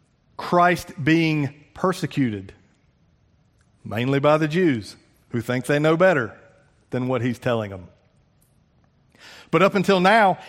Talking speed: 120 wpm